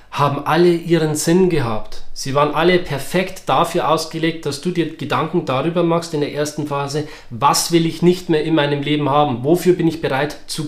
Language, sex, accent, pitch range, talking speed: German, male, German, 130-160 Hz, 195 wpm